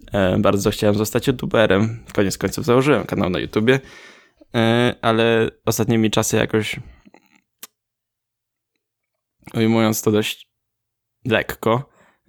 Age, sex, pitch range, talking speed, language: 10-29, male, 105-115 Hz, 95 wpm, Polish